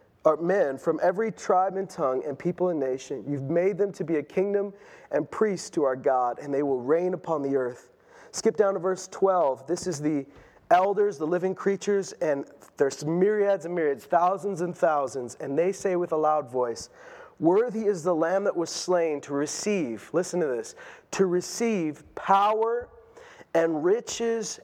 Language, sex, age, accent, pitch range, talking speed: English, male, 30-49, American, 175-270 Hz, 180 wpm